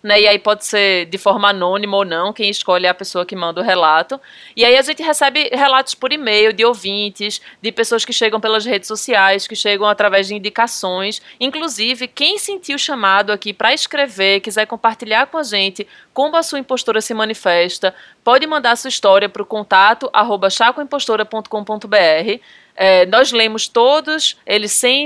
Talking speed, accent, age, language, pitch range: 175 wpm, Brazilian, 20-39, Portuguese, 205-260 Hz